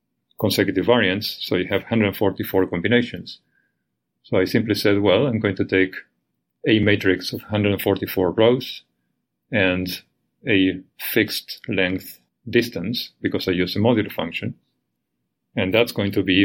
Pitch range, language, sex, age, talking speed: 90-100 Hz, English, male, 40-59, 135 wpm